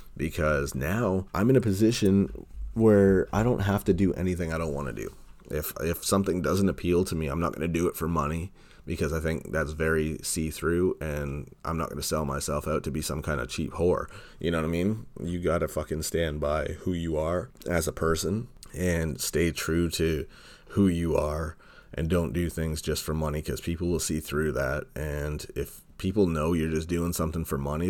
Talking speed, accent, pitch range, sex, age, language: 215 wpm, American, 75-85 Hz, male, 30-49, English